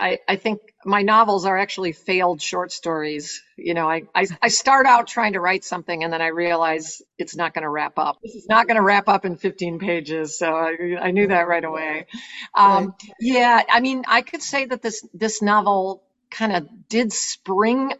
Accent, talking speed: American, 205 wpm